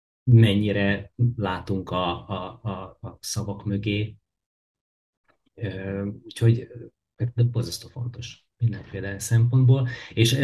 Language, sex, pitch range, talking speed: Hungarian, male, 95-115 Hz, 80 wpm